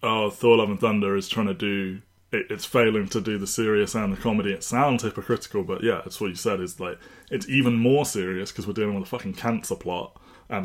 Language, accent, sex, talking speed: English, British, male, 240 wpm